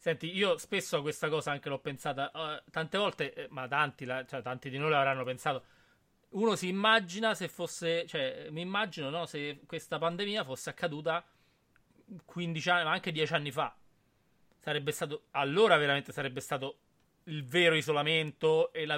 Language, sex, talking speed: Italian, male, 170 wpm